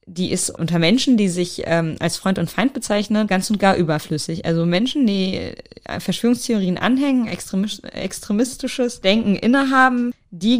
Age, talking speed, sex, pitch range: 20-39, 145 wpm, female, 165-225 Hz